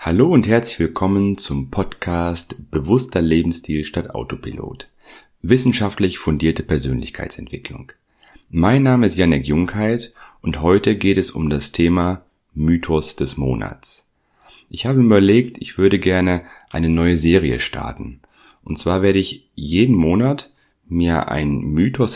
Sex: male